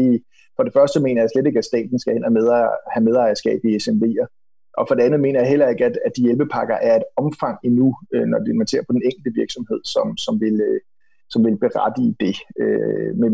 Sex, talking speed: male, 215 wpm